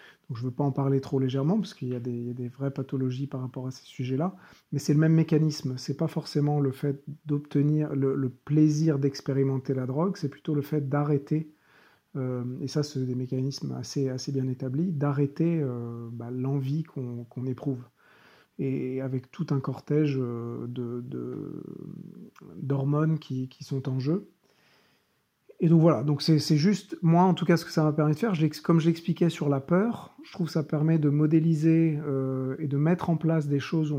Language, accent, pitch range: French, French, 135-160 Hz